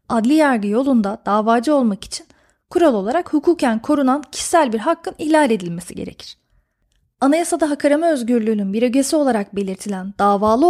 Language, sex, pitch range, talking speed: Turkish, female, 220-285 Hz, 140 wpm